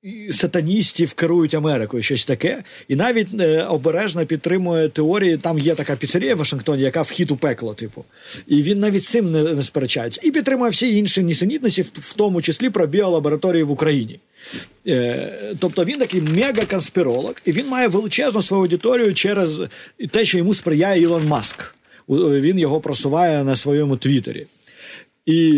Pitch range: 150-195 Hz